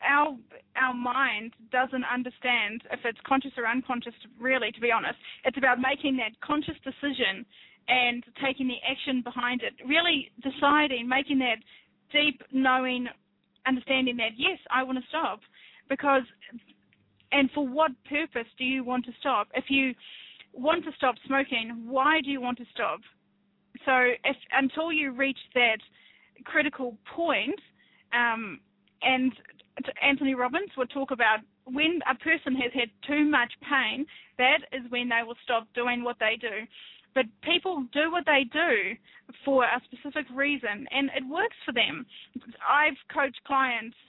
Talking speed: 150 wpm